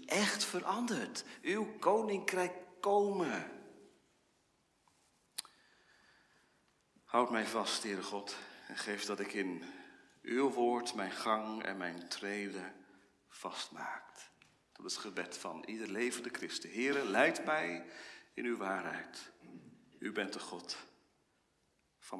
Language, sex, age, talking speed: Dutch, male, 40-59, 110 wpm